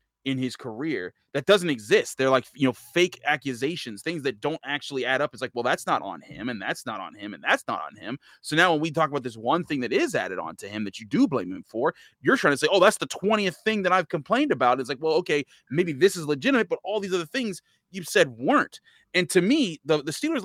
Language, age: English, 30-49